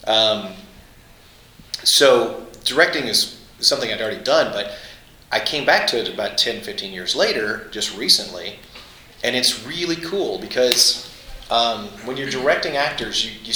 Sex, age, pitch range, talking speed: male, 30-49, 110-145 Hz, 140 wpm